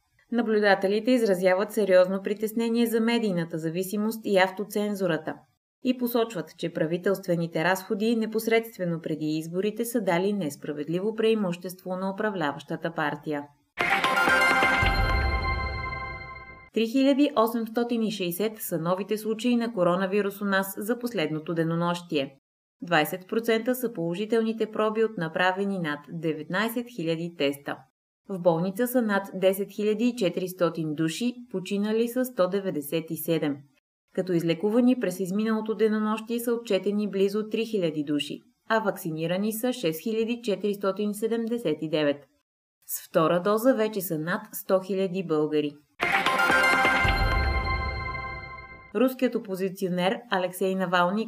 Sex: female